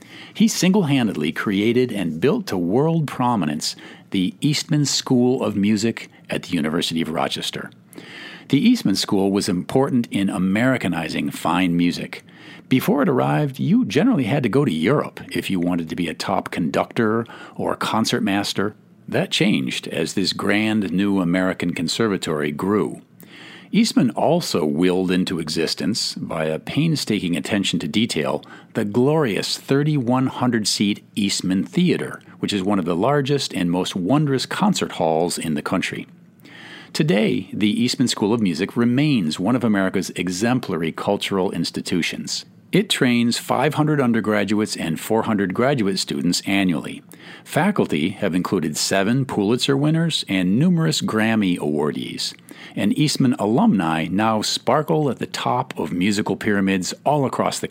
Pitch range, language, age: 95-145 Hz, English, 50-69